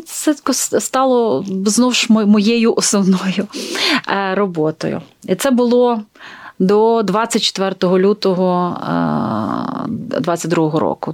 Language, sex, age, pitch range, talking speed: Ukrainian, female, 30-49, 170-205 Hz, 75 wpm